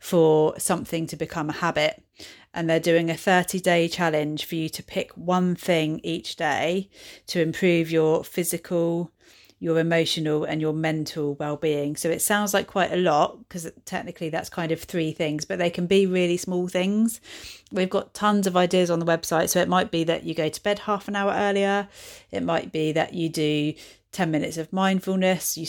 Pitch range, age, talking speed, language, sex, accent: 155-180 Hz, 40-59, 195 wpm, English, female, British